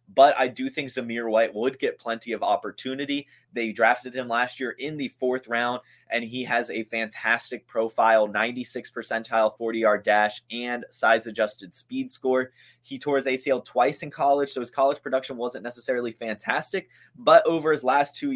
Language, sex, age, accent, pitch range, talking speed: English, male, 20-39, American, 110-135 Hz, 175 wpm